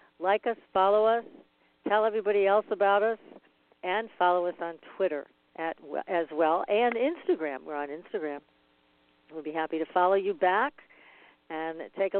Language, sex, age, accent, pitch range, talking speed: English, female, 50-69, American, 160-215 Hz, 155 wpm